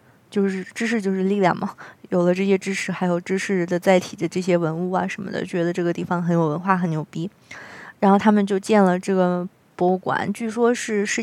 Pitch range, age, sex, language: 180-210 Hz, 20-39, female, Chinese